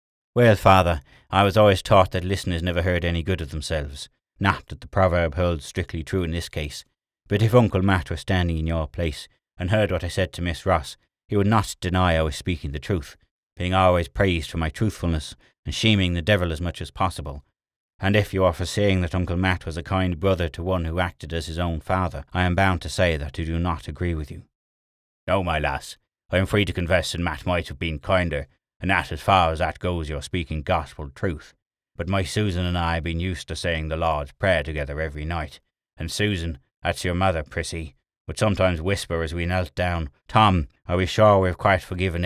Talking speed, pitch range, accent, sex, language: 225 wpm, 80-95 Hz, British, male, English